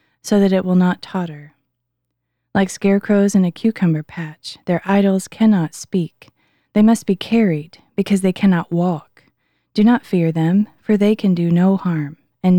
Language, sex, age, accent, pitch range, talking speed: English, female, 20-39, American, 160-200 Hz, 165 wpm